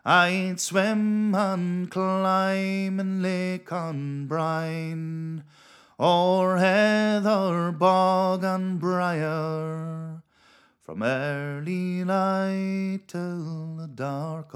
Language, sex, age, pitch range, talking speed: English, male, 30-49, 135-185 Hz, 80 wpm